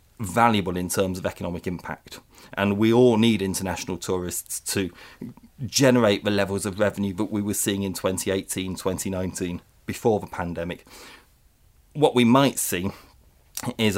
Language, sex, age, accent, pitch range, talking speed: English, male, 30-49, British, 95-115 Hz, 140 wpm